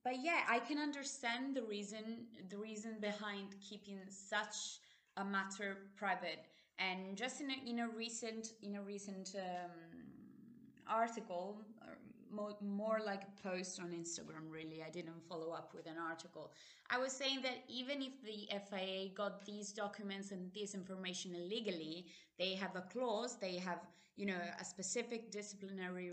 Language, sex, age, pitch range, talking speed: English, female, 20-39, 190-230 Hz, 155 wpm